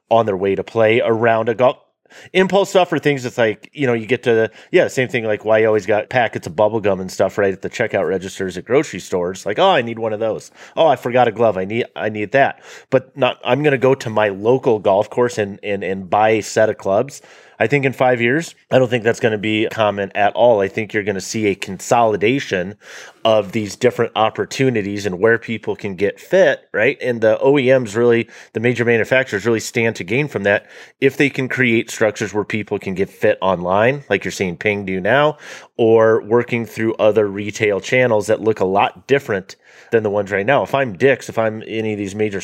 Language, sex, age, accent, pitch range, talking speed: English, male, 30-49, American, 105-125 Hz, 235 wpm